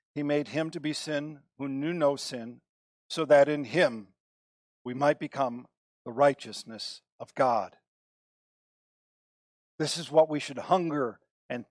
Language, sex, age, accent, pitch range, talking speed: English, male, 50-69, American, 155-205 Hz, 145 wpm